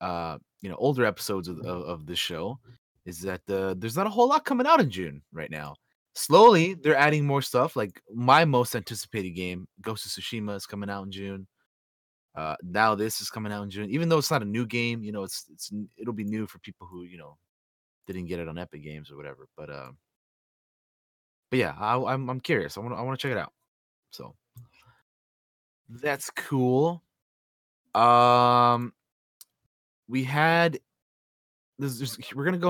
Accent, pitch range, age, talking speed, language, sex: American, 95-125 Hz, 20-39, 190 wpm, English, male